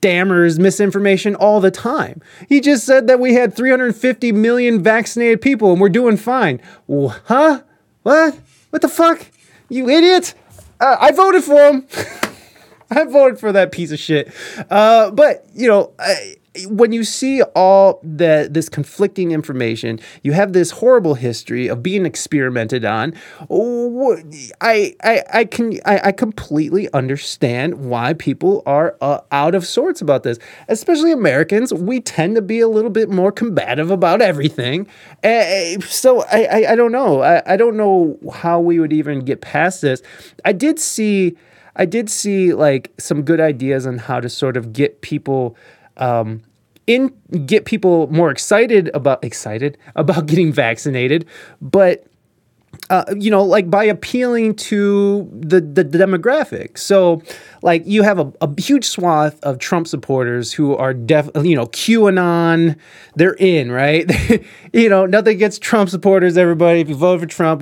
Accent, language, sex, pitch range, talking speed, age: American, English, male, 155-225 Hz, 160 wpm, 30-49